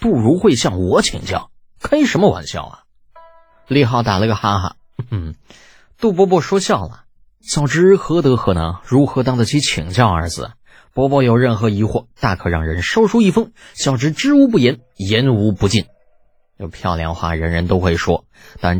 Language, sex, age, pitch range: Chinese, male, 20-39, 90-135 Hz